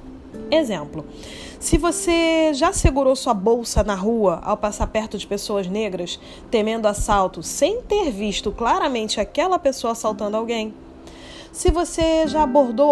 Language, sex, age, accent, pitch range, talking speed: Portuguese, female, 20-39, Brazilian, 215-295 Hz, 135 wpm